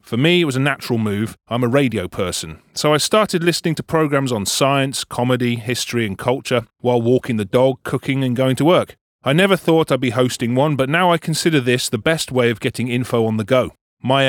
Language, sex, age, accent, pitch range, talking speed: English, male, 30-49, British, 120-155 Hz, 225 wpm